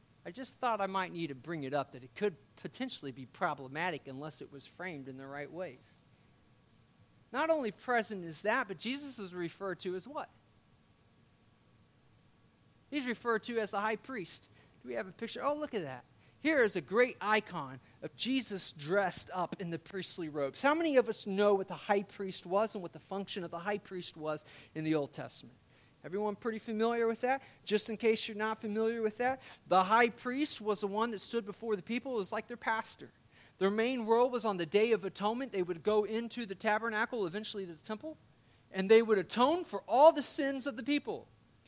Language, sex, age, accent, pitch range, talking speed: English, male, 40-59, American, 150-225 Hz, 210 wpm